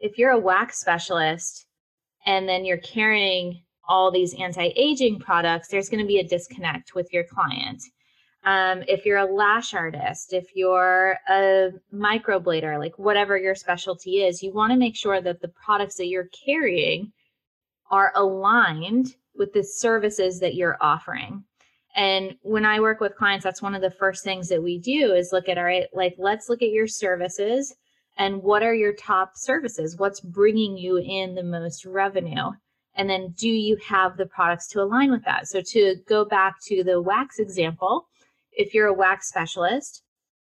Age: 20-39